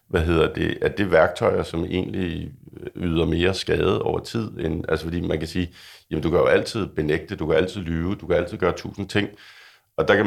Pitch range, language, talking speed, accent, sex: 80-95 Hz, Danish, 215 wpm, native, male